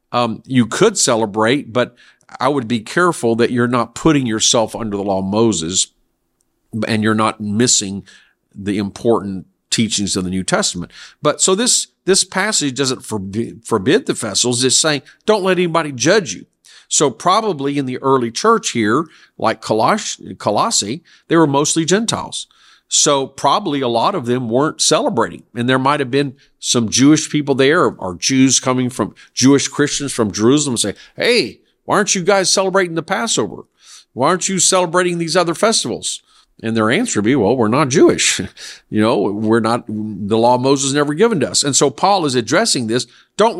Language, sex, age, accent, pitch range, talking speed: English, male, 50-69, American, 110-170 Hz, 180 wpm